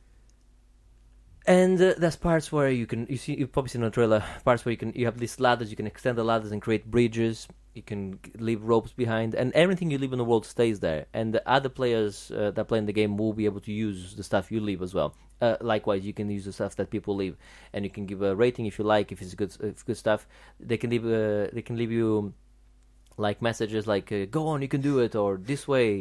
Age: 20-39